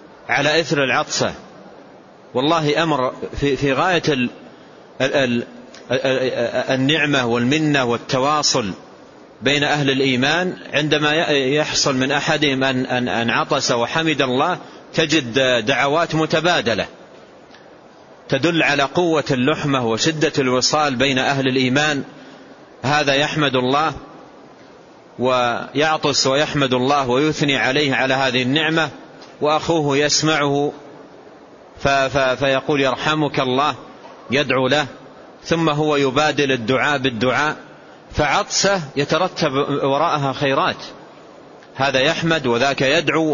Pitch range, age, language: 130-155 Hz, 40-59, Arabic